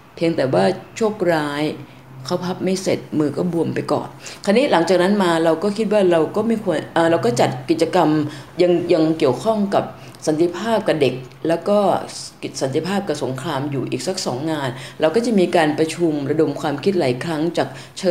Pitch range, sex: 145-185 Hz, female